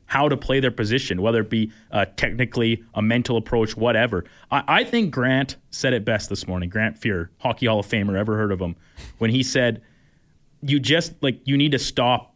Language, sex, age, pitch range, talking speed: English, male, 20-39, 110-140 Hz, 210 wpm